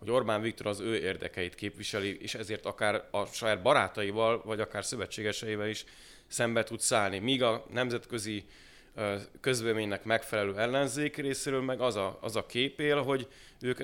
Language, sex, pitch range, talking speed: Hungarian, male, 105-130 Hz, 145 wpm